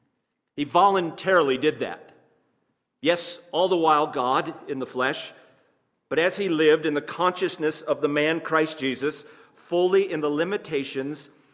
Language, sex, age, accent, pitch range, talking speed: English, male, 50-69, American, 140-185 Hz, 145 wpm